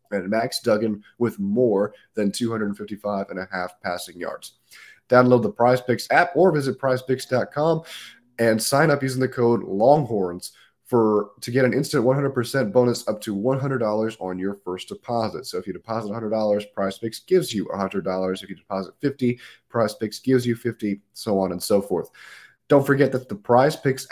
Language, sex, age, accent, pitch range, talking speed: English, male, 30-49, American, 100-120 Hz, 175 wpm